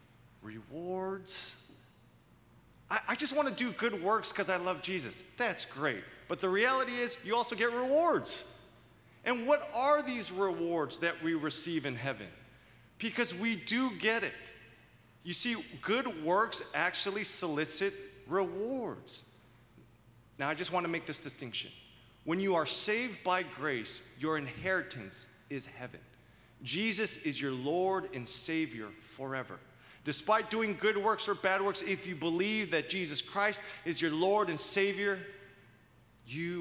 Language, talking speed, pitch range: English, 145 wpm, 120-195 Hz